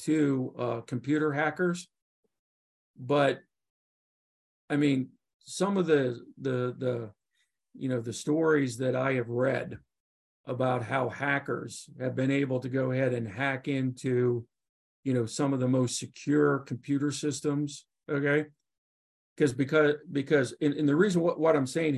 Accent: American